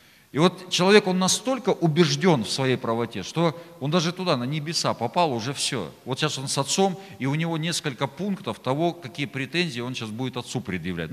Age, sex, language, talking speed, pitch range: 40-59, male, Russian, 195 wpm, 110-155 Hz